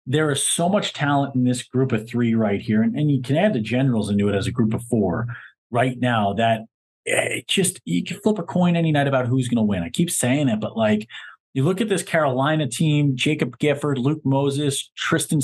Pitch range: 125-160 Hz